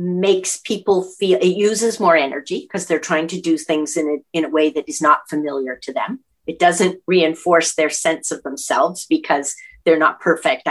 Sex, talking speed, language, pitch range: female, 195 wpm, English, 165-215 Hz